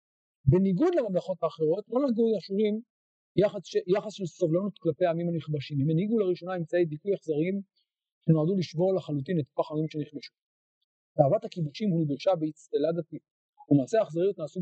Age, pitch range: 50-69, 155-210 Hz